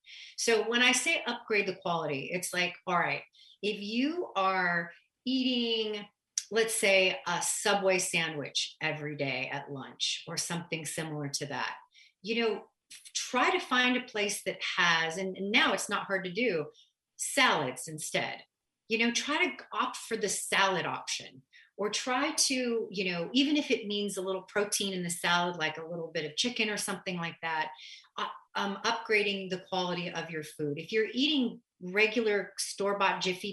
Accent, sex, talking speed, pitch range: American, female, 170 wpm, 175-230 Hz